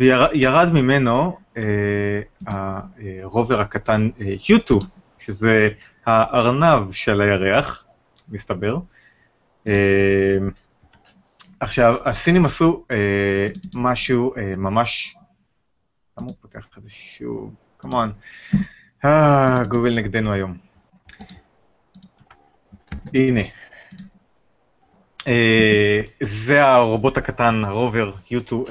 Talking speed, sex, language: 75 wpm, male, Hebrew